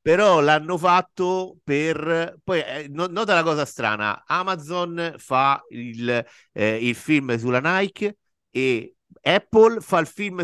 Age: 50-69